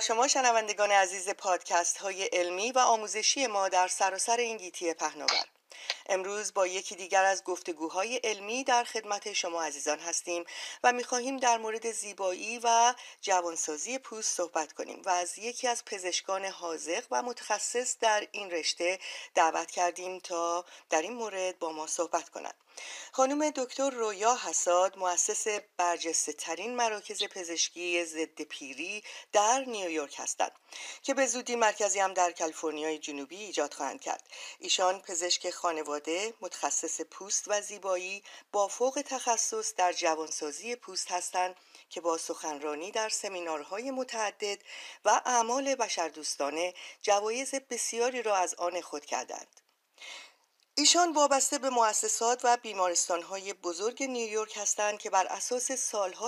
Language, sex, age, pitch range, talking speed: Persian, female, 40-59, 175-230 Hz, 135 wpm